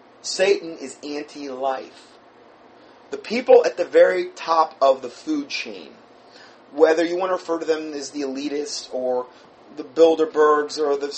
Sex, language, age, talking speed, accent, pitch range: male, English, 30-49, 150 wpm, American, 135-175 Hz